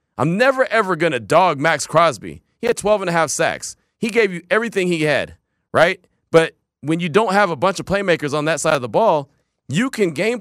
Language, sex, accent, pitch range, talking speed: English, male, American, 135-200 Hz, 230 wpm